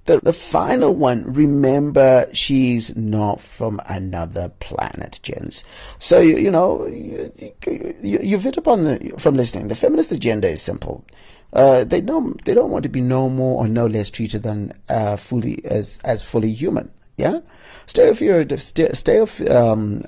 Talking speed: 145 wpm